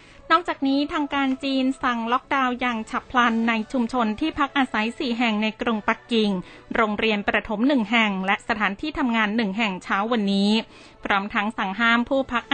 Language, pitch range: Thai, 210-250 Hz